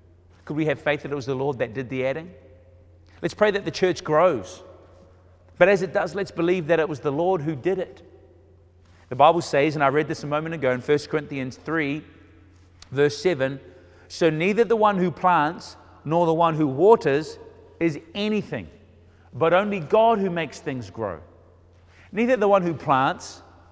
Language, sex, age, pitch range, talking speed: English, male, 30-49, 90-150 Hz, 185 wpm